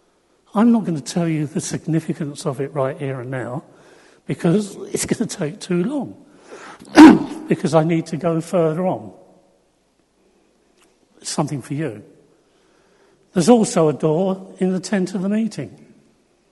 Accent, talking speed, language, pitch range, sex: British, 155 wpm, English, 150-185 Hz, male